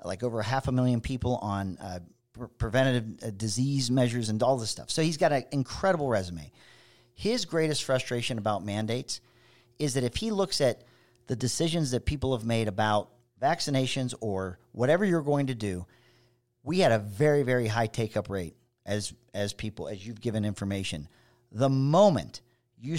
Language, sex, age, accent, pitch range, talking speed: English, male, 40-59, American, 115-145 Hz, 170 wpm